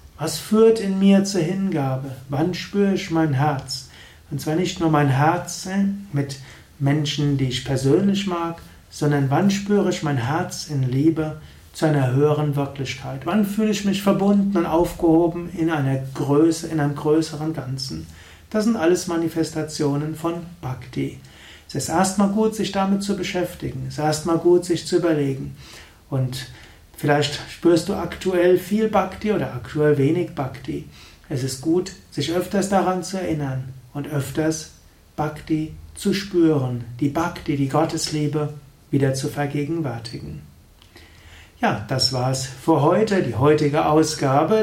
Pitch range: 140-175 Hz